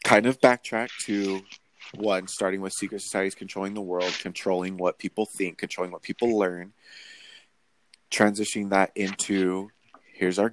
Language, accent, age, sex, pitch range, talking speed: English, American, 30-49, male, 90-110 Hz, 140 wpm